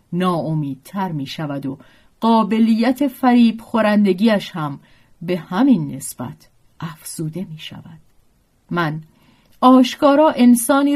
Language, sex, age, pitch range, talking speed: Persian, female, 40-59, 175-265 Hz, 100 wpm